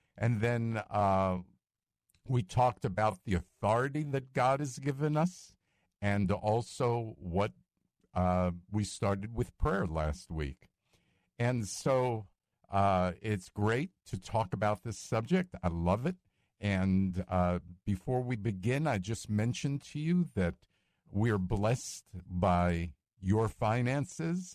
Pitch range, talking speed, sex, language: 95-125 Hz, 130 wpm, male, English